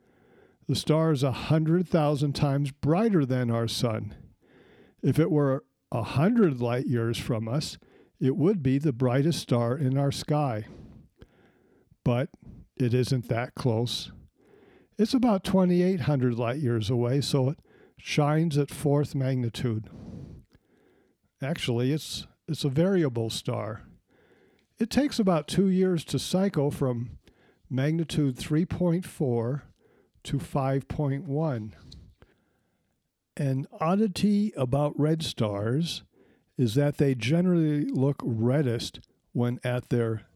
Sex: male